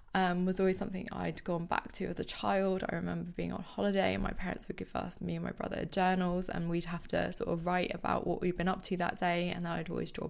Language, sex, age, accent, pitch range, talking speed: English, female, 20-39, British, 165-190 Hz, 275 wpm